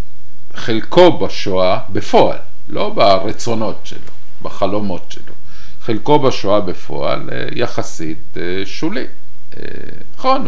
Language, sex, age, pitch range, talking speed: Hebrew, male, 50-69, 95-115 Hz, 80 wpm